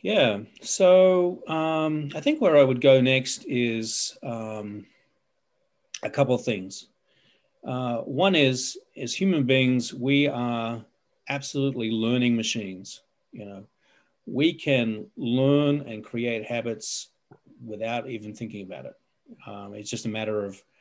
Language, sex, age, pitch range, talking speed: English, male, 40-59, 110-140 Hz, 135 wpm